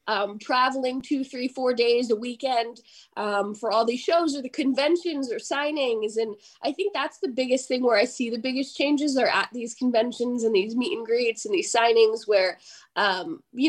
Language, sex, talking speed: English, female, 200 wpm